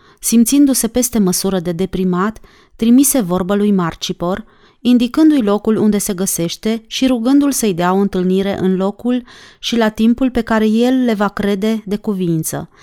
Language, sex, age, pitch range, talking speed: Romanian, female, 30-49, 185-235 Hz, 155 wpm